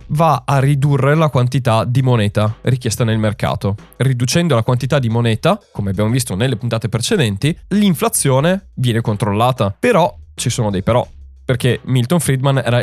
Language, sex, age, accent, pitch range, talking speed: Italian, male, 20-39, native, 110-140 Hz, 155 wpm